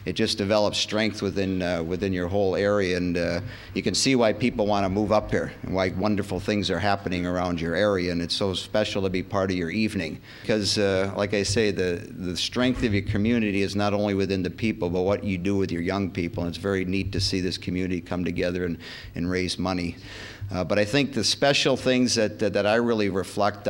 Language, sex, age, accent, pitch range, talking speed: English, male, 50-69, American, 95-110 Hz, 235 wpm